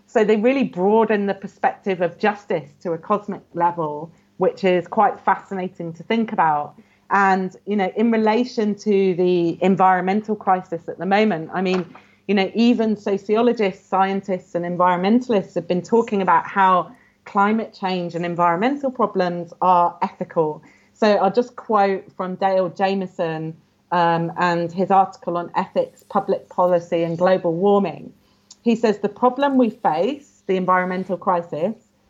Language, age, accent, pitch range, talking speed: English, 40-59, British, 175-215 Hz, 150 wpm